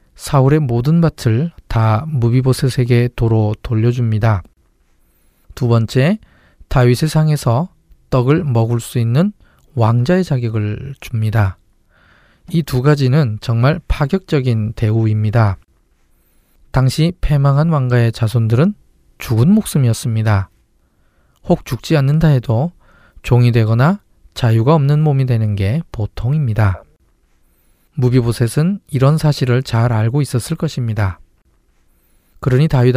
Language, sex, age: Korean, male, 20-39